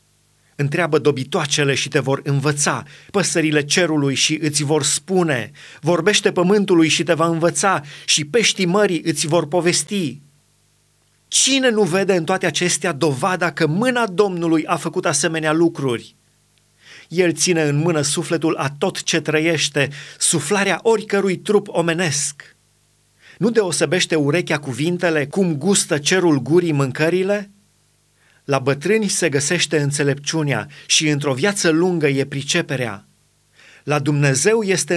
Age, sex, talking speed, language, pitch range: 30-49, male, 125 wpm, Romanian, 145-180 Hz